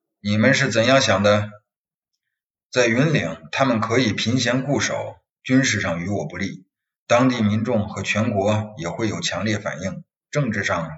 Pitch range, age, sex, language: 110-140 Hz, 30-49, male, Chinese